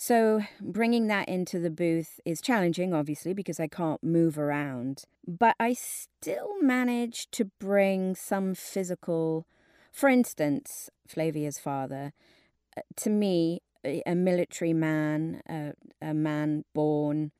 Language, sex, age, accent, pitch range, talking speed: English, female, 30-49, British, 150-180 Hz, 130 wpm